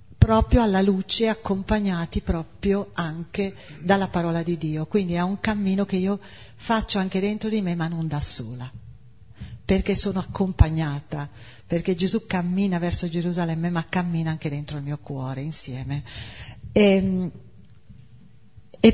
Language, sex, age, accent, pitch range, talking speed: Italian, female, 40-59, native, 160-200 Hz, 135 wpm